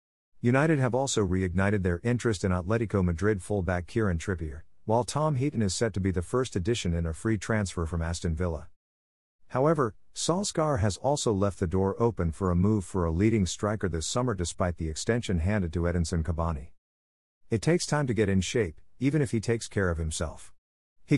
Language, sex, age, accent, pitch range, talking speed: English, male, 50-69, American, 90-115 Hz, 195 wpm